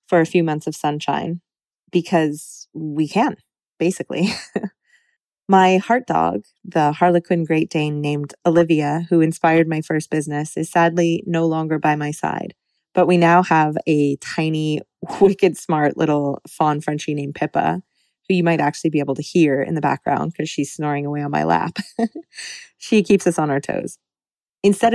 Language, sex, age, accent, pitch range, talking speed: English, female, 20-39, American, 150-180 Hz, 165 wpm